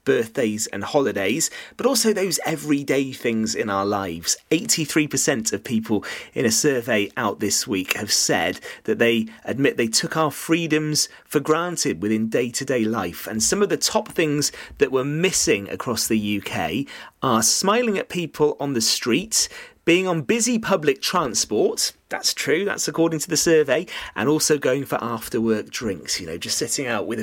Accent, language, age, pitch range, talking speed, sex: British, English, 30-49, 110-160 Hz, 170 wpm, male